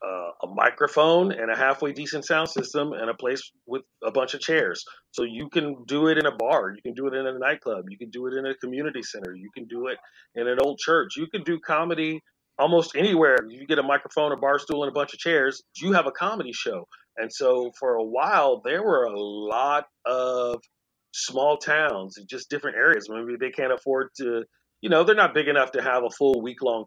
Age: 40-59